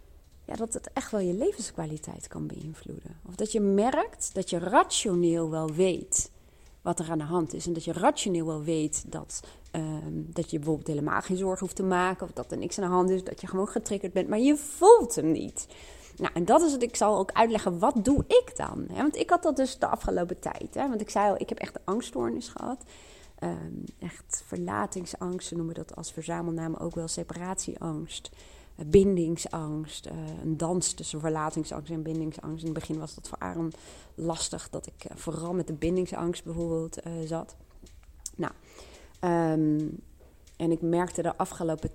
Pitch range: 160-200 Hz